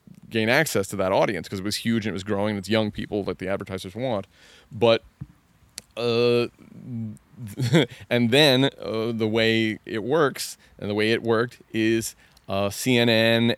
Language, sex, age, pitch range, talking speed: English, male, 30-49, 100-115 Hz, 170 wpm